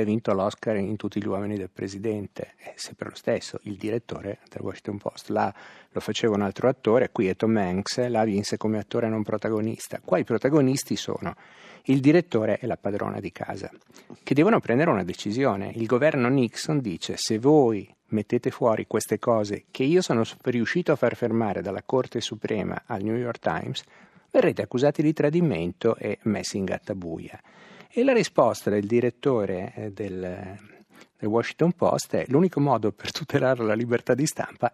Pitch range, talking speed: 110-140 Hz, 175 wpm